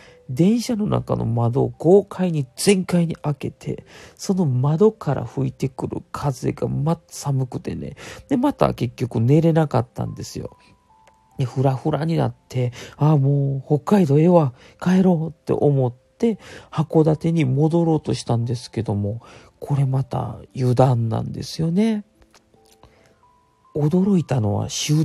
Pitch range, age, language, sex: 125-175 Hz, 40-59, Japanese, male